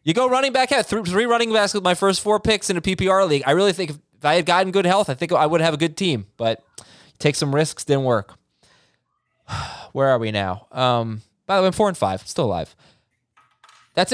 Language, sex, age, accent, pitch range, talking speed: English, male, 20-39, American, 125-185 Hz, 240 wpm